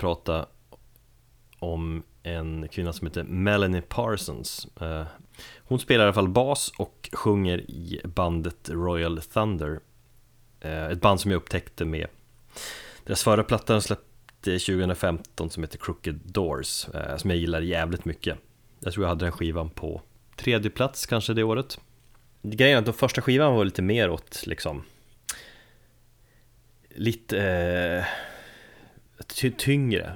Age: 30-49